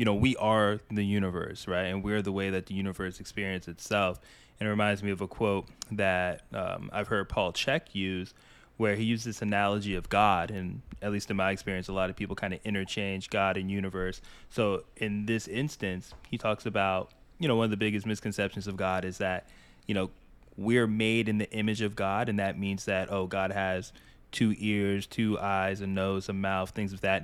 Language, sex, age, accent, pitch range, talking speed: English, male, 20-39, American, 95-110 Hz, 215 wpm